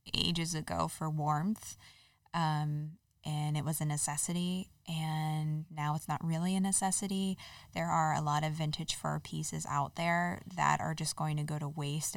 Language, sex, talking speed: English, female, 175 wpm